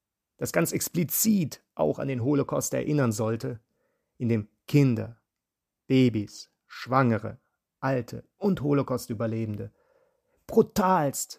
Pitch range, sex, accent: 115-140 Hz, male, German